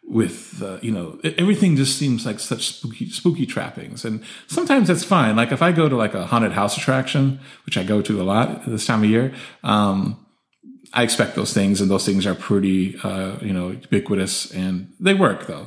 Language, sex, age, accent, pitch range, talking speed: English, male, 30-49, American, 100-135 Hz, 205 wpm